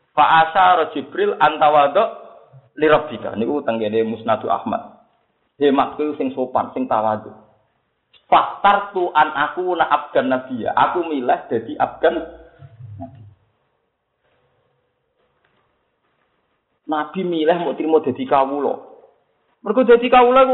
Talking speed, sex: 105 wpm, male